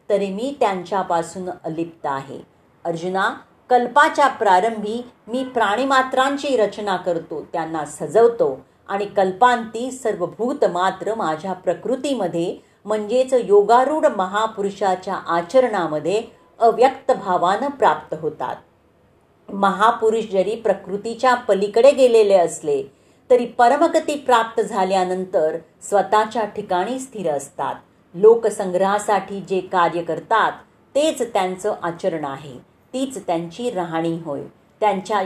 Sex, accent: female, native